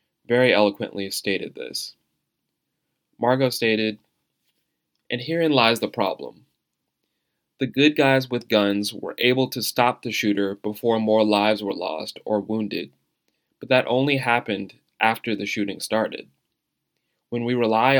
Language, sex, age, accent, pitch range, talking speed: English, male, 20-39, American, 105-120 Hz, 135 wpm